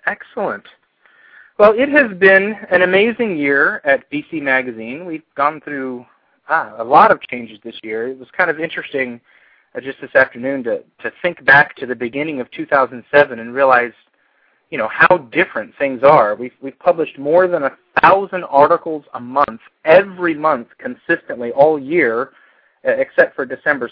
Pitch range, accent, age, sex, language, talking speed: 130-190 Hz, American, 30-49, male, English, 160 wpm